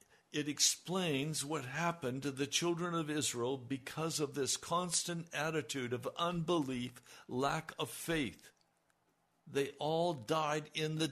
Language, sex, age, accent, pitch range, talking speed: English, male, 60-79, American, 115-165 Hz, 130 wpm